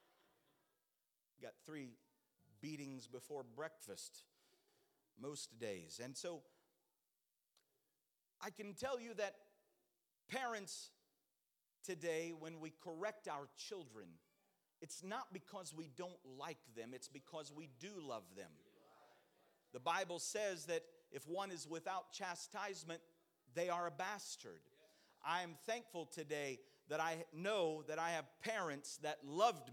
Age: 50-69